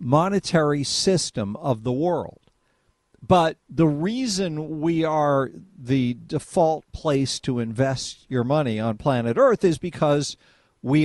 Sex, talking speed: male, 125 wpm